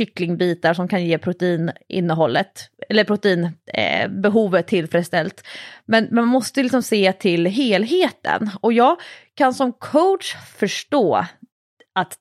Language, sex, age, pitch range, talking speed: English, female, 30-49, 170-235 Hz, 115 wpm